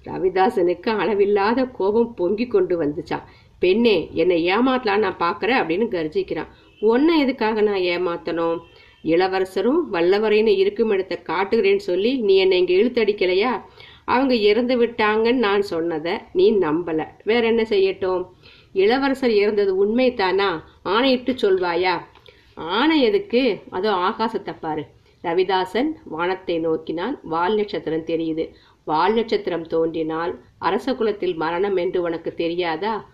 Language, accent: Tamil, native